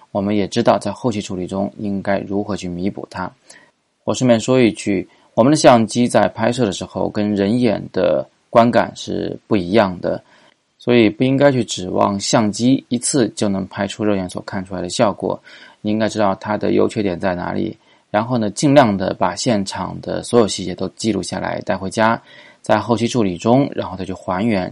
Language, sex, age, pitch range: Chinese, male, 20-39, 95-115 Hz